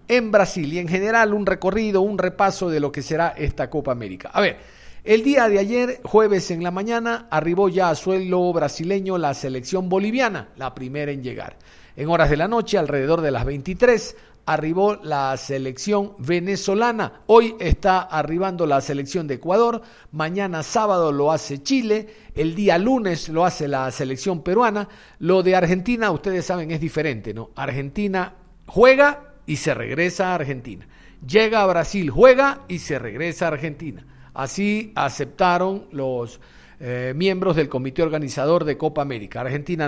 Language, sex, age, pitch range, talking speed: Spanish, male, 50-69, 145-205 Hz, 160 wpm